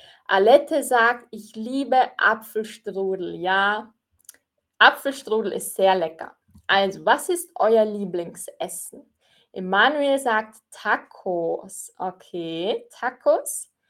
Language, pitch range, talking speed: German, 190-265 Hz, 85 wpm